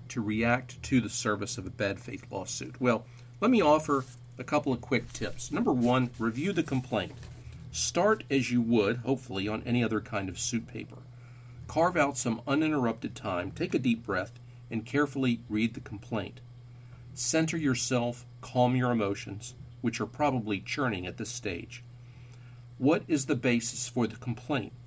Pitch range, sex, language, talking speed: 115-130 Hz, male, English, 165 wpm